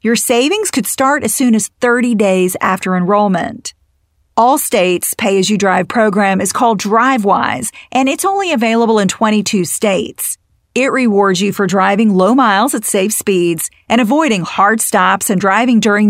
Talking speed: 155 wpm